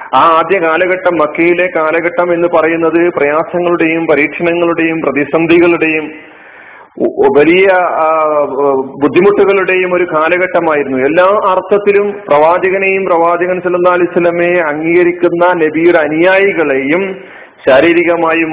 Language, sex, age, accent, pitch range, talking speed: Malayalam, male, 40-59, native, 160-200 Hz, 80 wpm